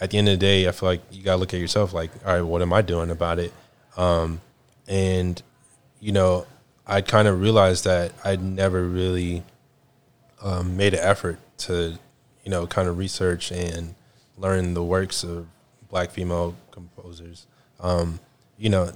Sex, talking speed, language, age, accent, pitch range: male, 180 wpm, English, 20-39, American, 90-105 Hz